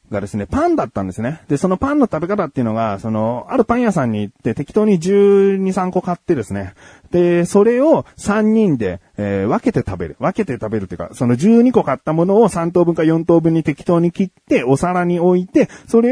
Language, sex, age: Japanese, male, 30-49